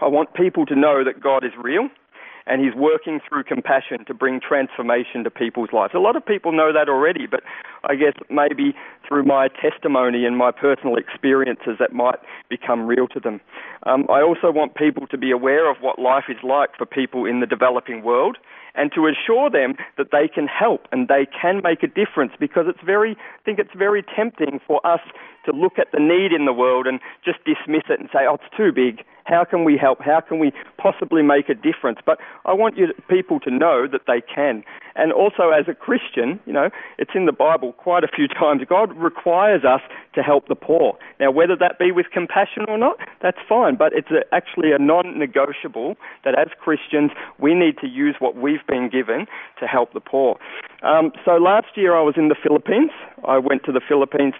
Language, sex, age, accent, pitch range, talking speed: English, male, 40-59, Australian, 135-180 Hz, 215 wpm